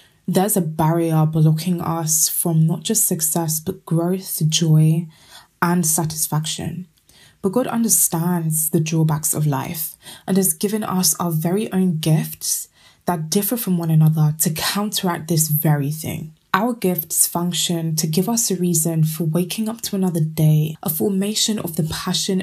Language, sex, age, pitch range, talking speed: English, female, 20-39, 160-190 Hz, 155 wpm